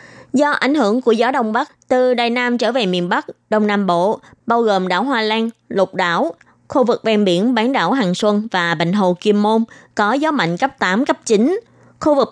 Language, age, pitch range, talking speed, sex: Vietnamese, 20-39, 200-255 Hz, 225 wpm, female